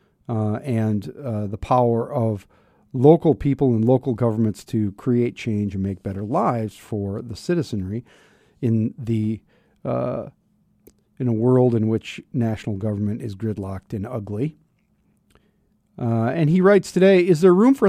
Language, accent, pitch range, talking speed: English, American, 110-155 Hz, 150 wpm